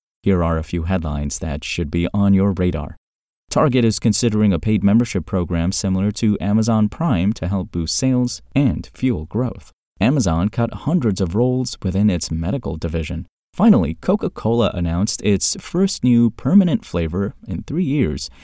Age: 30-49